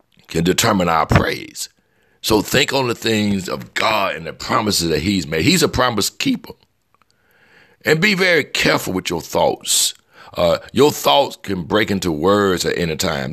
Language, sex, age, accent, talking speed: English, male, 60-79, American, 170 wpm